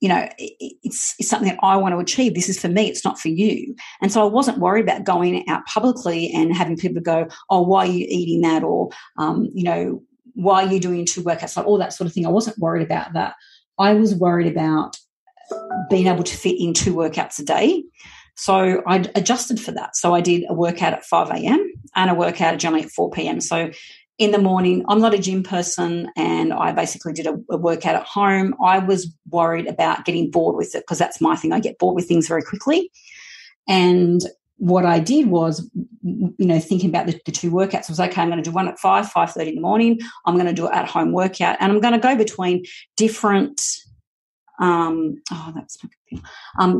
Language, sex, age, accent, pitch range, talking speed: English, female, 40-59, Australian, 170-210 Hz, 225 wpm